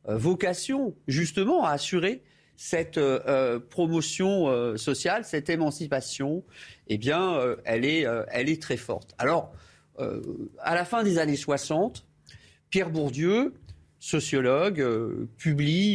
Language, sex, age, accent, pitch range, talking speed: French, male, 40-59, French, 145-185 Hz, 120 wpm